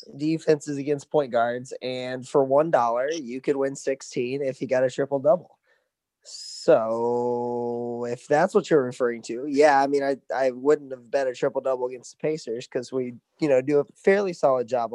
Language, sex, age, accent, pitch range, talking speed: English, male, 20-39, American, 130-150 Hz, 195 wpm